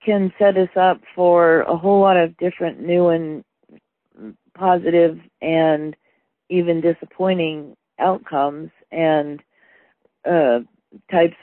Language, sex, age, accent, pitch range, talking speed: English, female, 40-59, American, 160-190 Hz, 105 wpm